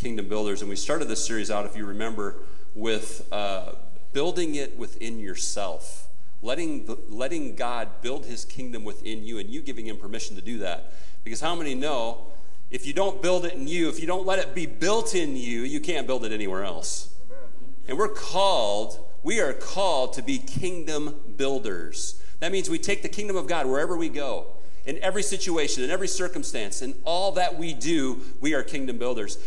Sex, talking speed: male, 195 wpm